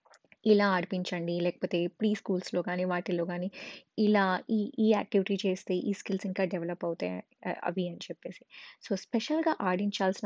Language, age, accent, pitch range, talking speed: Telugu, 20-39, native, 180-220 Hz, 140 wpm